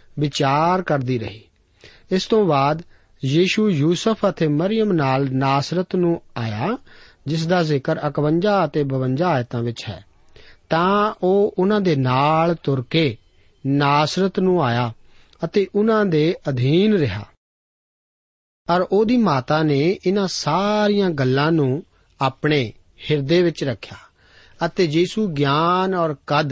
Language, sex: Punjabi, male